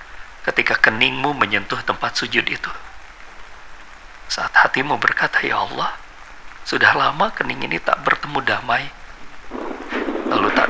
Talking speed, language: 110 wpm, Indonesian